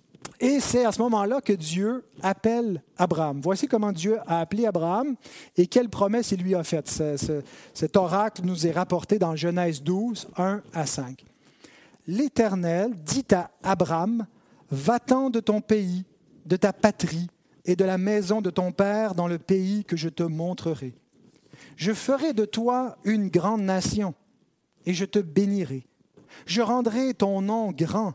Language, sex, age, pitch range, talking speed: French, male, 40-59, 175-220 Hz, 160 wpm